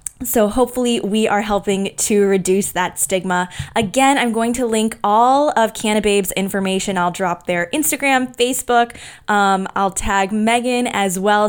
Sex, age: female, 20-39